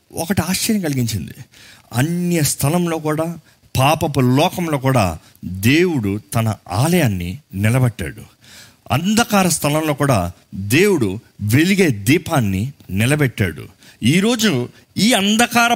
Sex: male